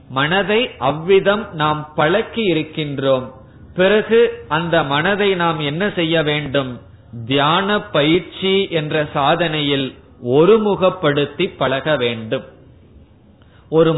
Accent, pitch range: native, 140-185 Hz